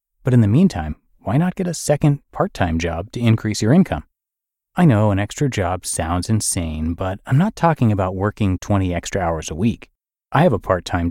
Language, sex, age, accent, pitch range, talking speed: English, male, 30-49, American, 90-130 Hz, 200 wpm